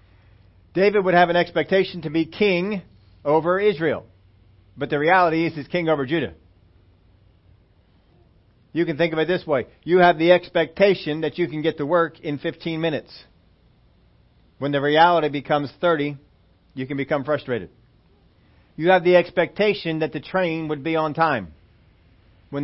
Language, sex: English, male